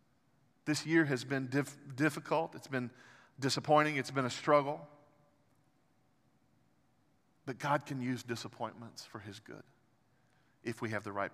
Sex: male